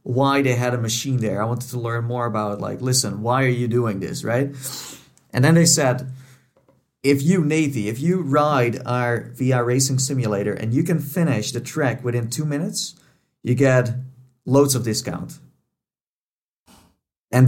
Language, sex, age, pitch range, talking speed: English, male, 40-59, 125-150 Hz, 170 wpm